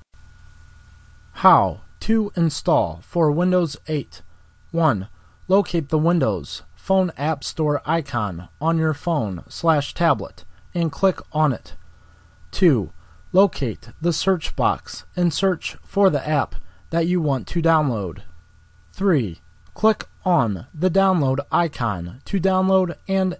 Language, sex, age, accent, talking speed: English, male, 30-49, American, 120 wpm